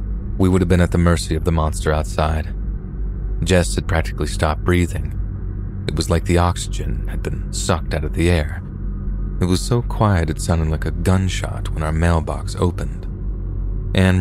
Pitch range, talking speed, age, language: 85-100 Hz, 175 wpm, 30-49, English